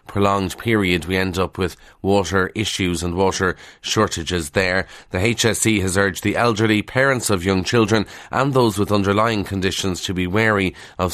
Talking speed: 165 wpm